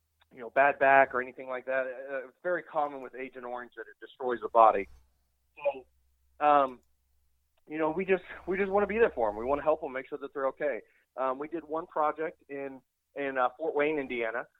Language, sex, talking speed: English, male, 220 wpm